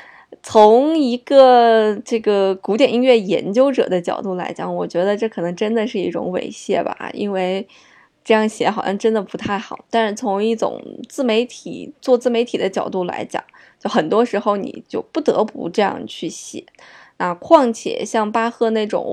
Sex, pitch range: female, 195-240 Hz